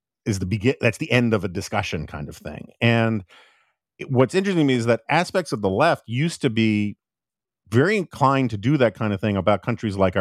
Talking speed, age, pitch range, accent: 225 wpm, 40-59, 105-135 Hz, American